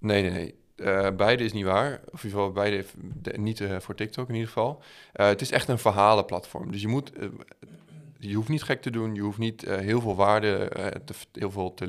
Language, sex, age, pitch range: Dutch, male, 20-39, 95-110 Hz